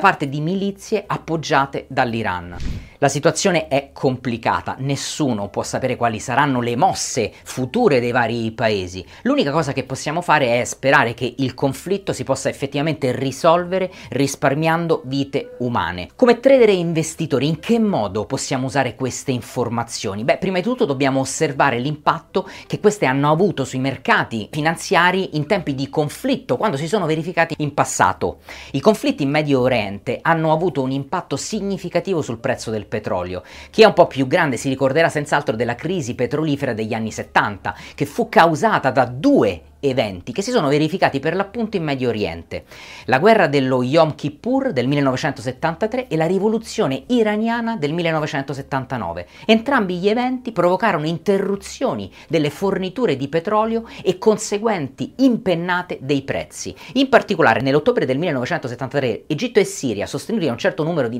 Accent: native